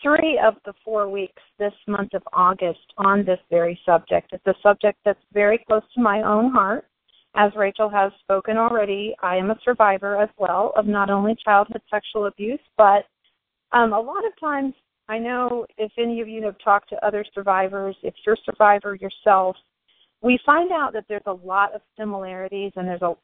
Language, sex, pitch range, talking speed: English, female, 195-230 Hz, 190 wpm